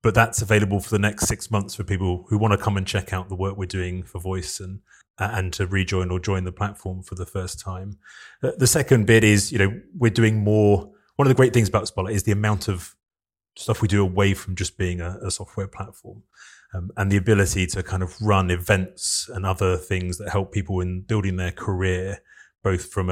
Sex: male